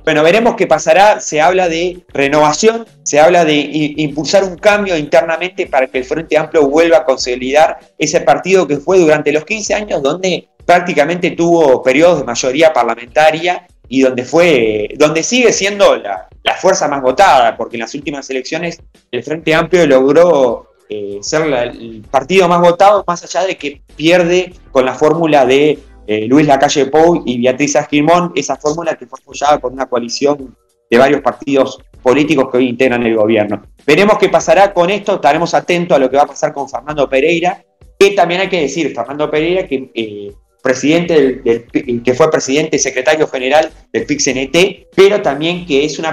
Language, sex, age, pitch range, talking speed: Spanish, male, 20-39, 130-175 Hz, 175 wpm